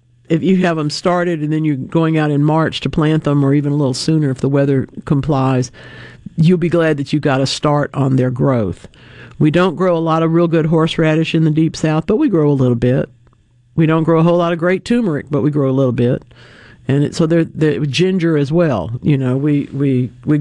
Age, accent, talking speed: 60-79, American, 240 wpm